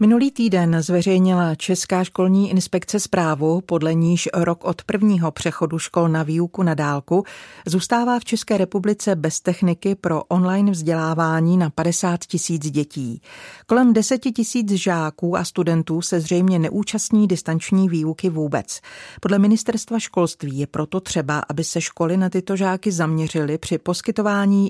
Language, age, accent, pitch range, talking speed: Czech, 40-59, native, 160-195 Hz, 140 wpm